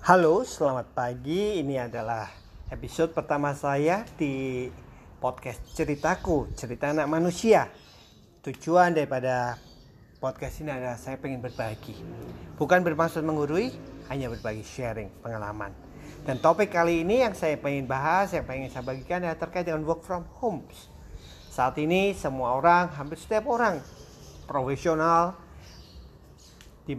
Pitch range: 120-165 Hz